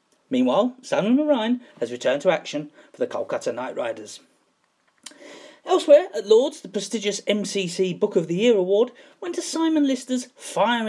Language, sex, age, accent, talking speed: English, male, 40-59, British, 155 wpm